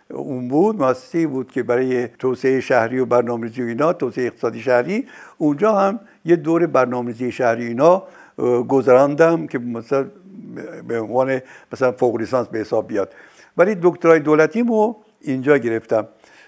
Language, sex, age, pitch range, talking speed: Persian, male, 60-79, 125-180 Hz, 135 wpm